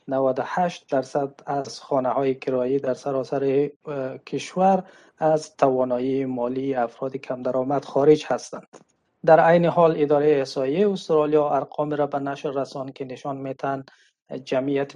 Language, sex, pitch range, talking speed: Persian, male, 130-150 Hz, 125 wpm